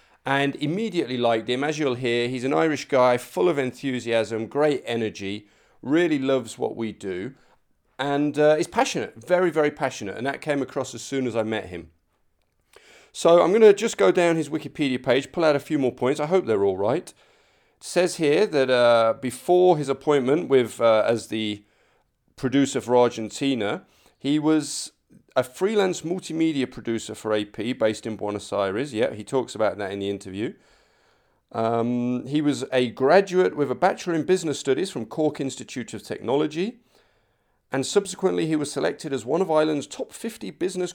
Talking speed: 180 wpm